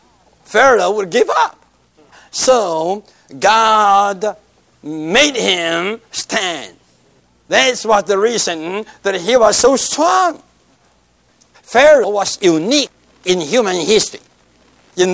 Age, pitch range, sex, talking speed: 60-79, 190-250 Hz, male, 100 wpm